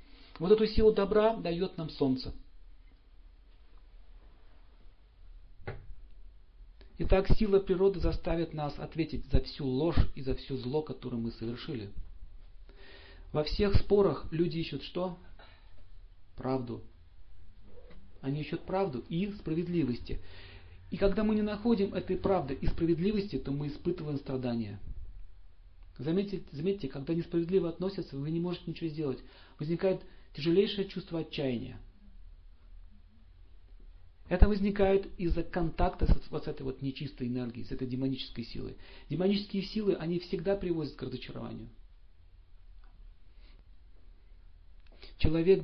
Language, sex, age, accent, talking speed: Russian, male, 40-59, native, 110 wpm